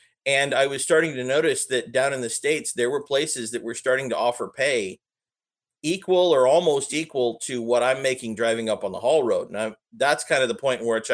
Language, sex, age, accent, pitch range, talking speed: English, male, 40-59, American, 110-150 Hz, 225 wpm